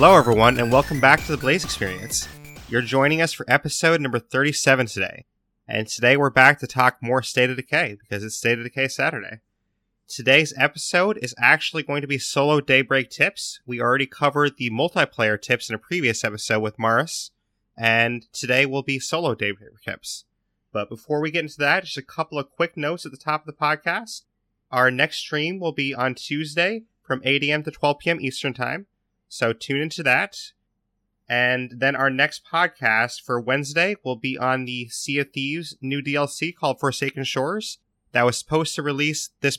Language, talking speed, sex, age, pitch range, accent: English, 190 wpm, male, 30-49, 115-145 Hz, American